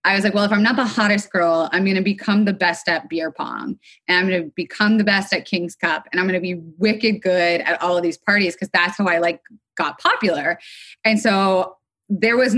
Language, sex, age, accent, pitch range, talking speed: English, female, 20-39, American, 170-200 Hz, 250 wpm